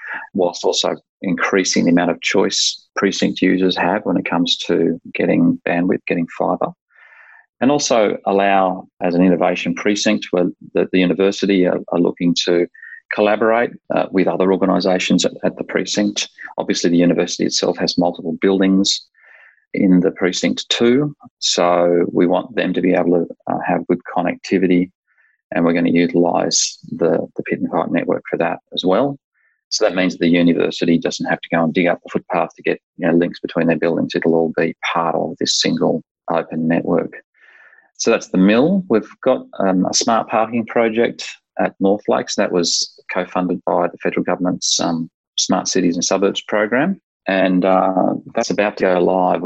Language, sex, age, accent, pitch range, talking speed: English, male, 30-49, Australian, 85-100 Hz, 175 wpm